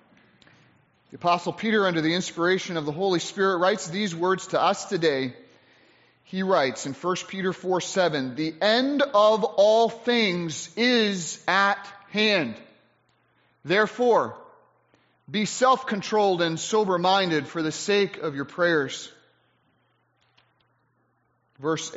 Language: English